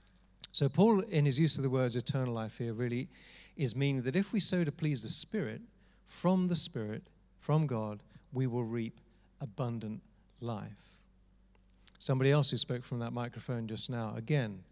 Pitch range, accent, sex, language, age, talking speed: 115-155 Hz, British, male, English, 40-59, 170 wpm